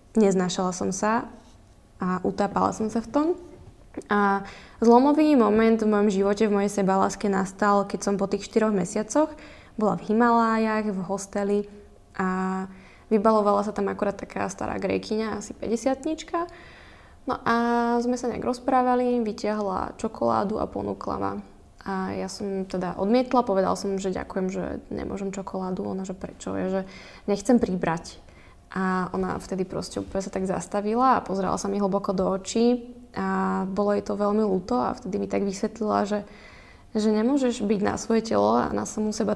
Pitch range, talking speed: 190-225 Hz, 165 wpm